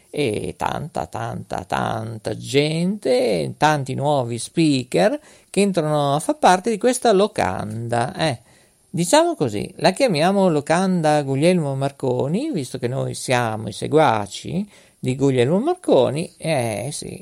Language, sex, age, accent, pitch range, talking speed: Italian, male, 50-69, native, 125-190 Hz, 120 wpm